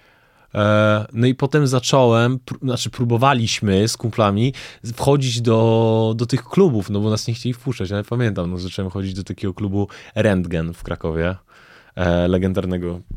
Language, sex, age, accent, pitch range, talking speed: Polish, male, 20-39, native, 90-120 Hz, 140 wpm